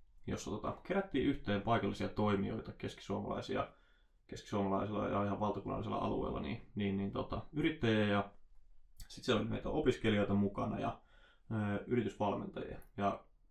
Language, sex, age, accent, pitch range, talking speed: Finnish, male, 20-39, native, 100-125 Hz, 105 wpm